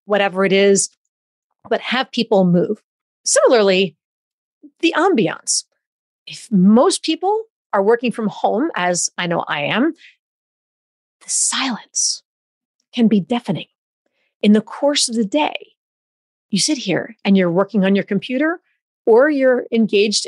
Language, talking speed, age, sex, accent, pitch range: English, 135 wpm, 40-59, female, American, 195-265 Hz